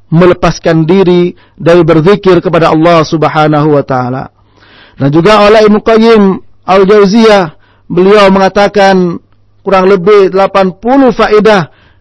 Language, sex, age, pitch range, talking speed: English, male, 40-59, 170-200 Hz, 100 wpm